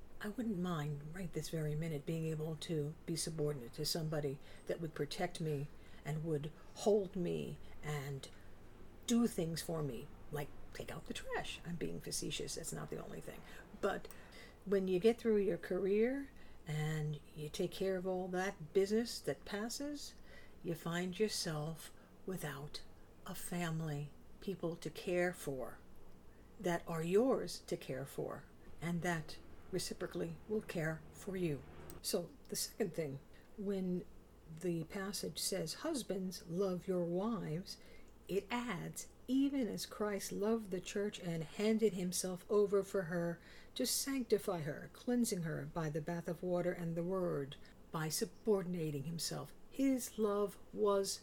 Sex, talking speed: female, 145 wpm